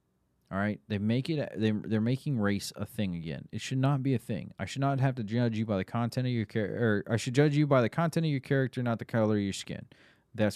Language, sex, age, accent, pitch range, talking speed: English, male, 30-49, American, 95-130 Hz, 280 wpm